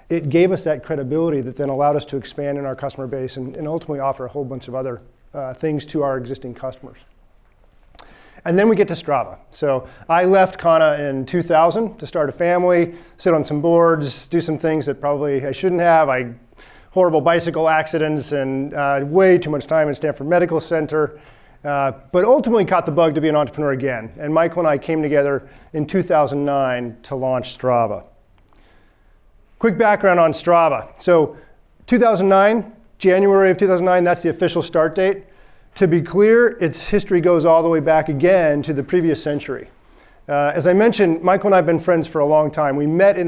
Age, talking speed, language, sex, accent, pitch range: 40-59, 195 wpm, English, male, American, 140-175 Hz